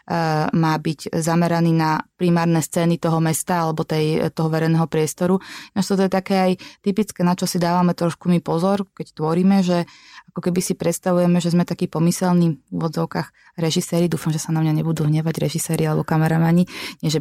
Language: Slovak